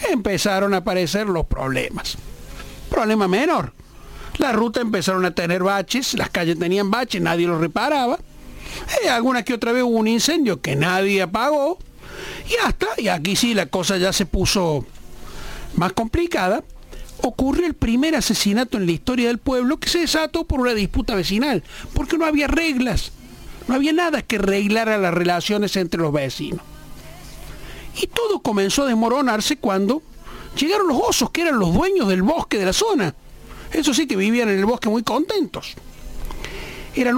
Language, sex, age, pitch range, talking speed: Spanish, male, 60-79, 195-300 Hz, 165 wpm